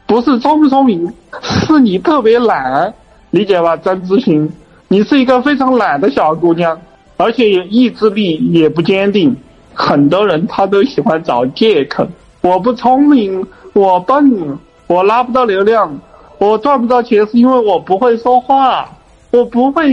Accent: native